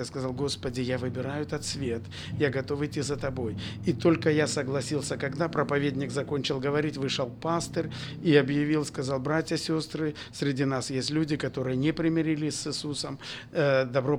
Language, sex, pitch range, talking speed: Russian, male, 130-150 Hz, 150 wpm